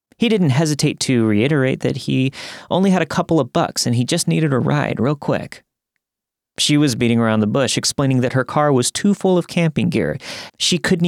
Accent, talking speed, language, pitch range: American, 210 wpm, English, 110-150 Hz